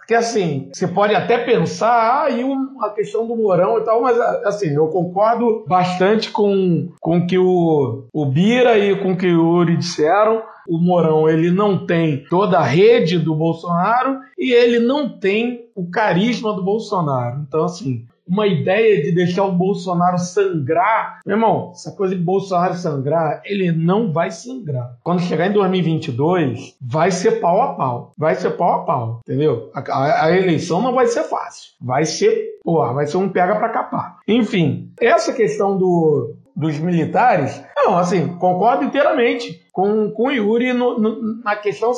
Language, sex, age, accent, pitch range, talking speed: Portuguese, male, 50-69, Brazilian, 165-220 Hz, 170 wpm